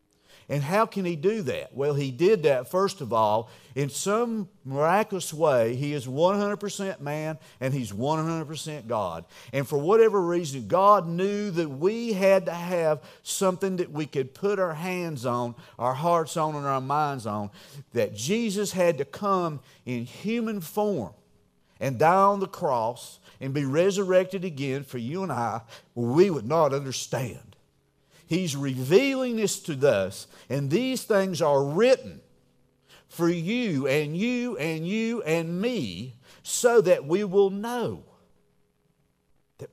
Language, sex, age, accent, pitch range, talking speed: English, male, 50-69, American, 140-195 Hz, 150 wpm